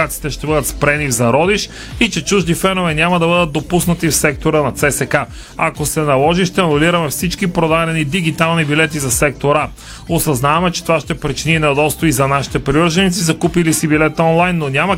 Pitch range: 130-165 Hz